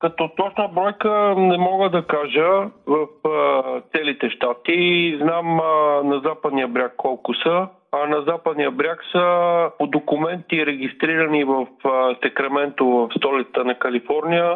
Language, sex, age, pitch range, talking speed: Bulgarian, male, 50-69, 135-170 Hz, 130 wpm